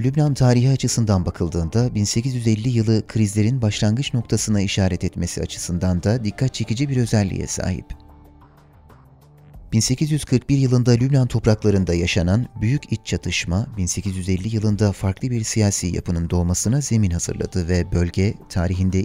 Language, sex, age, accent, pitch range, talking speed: Turkish, male, 30-49, native, 95-115 Hz, 120 wpm